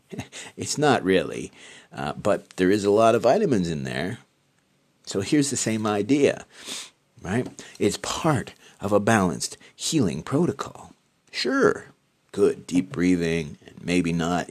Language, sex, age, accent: English, male, 40-59, American